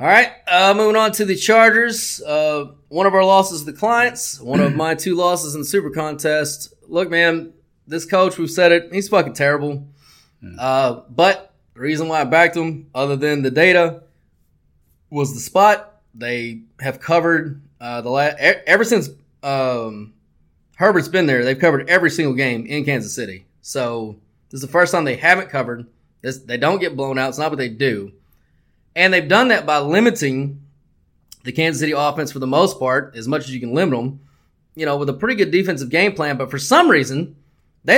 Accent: American